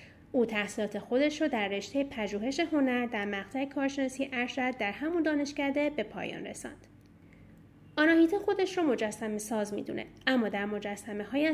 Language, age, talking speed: English, 30-49, 140 wpm